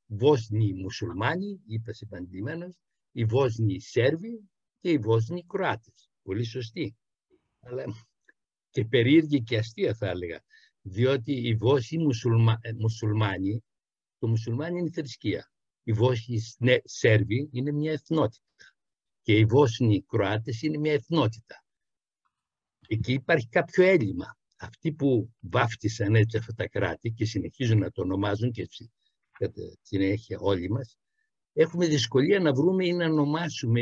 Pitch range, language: 110-150 Hz, Greek